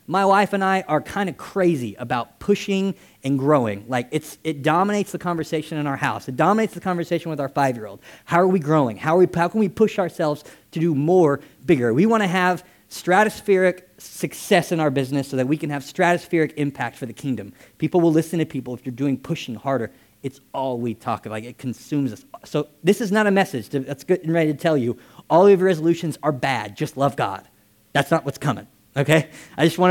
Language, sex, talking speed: English, male, 225 wpm